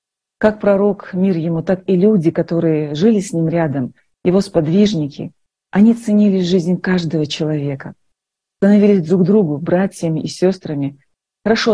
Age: 40-59